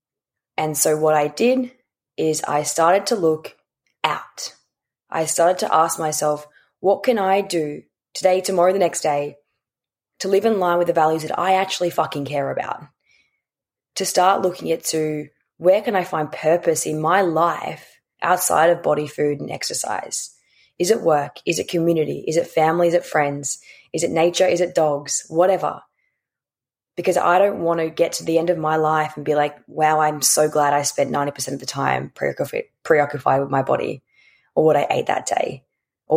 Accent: Australian